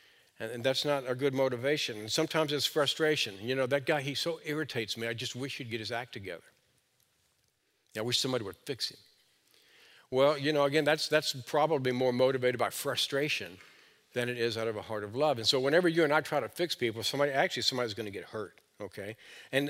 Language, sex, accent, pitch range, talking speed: English, male, American, 120-150 Hz, 215 wpm